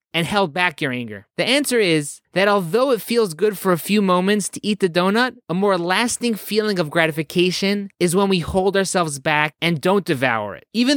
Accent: American